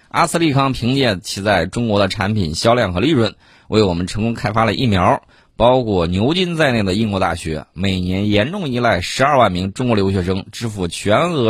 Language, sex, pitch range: Chinese, male, 90-120 Hz